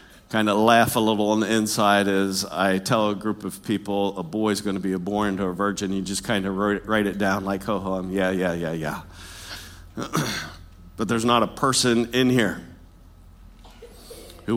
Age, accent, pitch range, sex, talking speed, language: 50-69, American, 95-145 Hz, male, 200 wpm, English